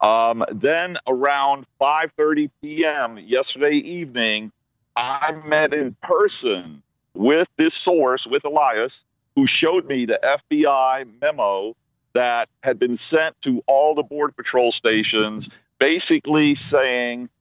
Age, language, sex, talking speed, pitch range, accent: 50-69, English, male, 115 wpm, 125-160 Hz, American